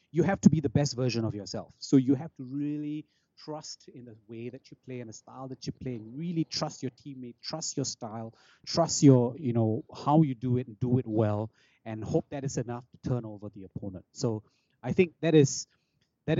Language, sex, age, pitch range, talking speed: English, male, 30-49, 120-150 Hz, 225 wpm